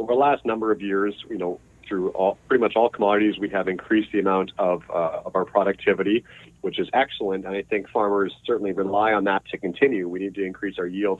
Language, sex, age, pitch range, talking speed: English, male, 40-59, 100-125 Hz, 230 wpm